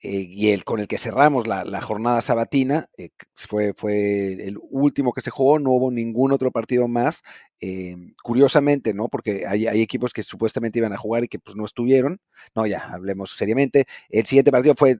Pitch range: 105-130 Hz